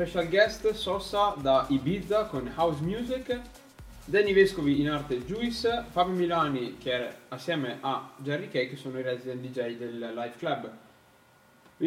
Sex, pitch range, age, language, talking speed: male, 130-185 Hz, 10-29, Italian, 150 wpm